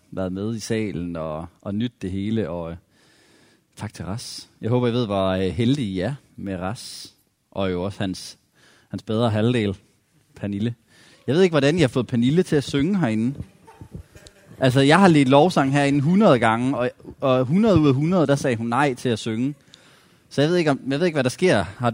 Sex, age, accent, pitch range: male, 30-49, native, 105-145 Hz